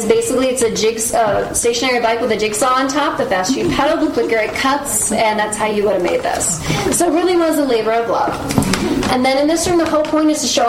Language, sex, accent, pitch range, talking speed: English, female, American, 220-265 Hz, 260 wpm